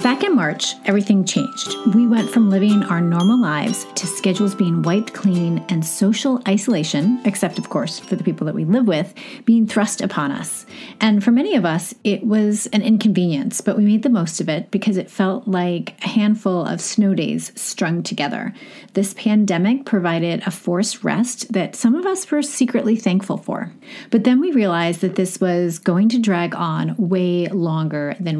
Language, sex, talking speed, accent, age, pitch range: English, female, 190 wpm, American, 30-49, 180-230 Hz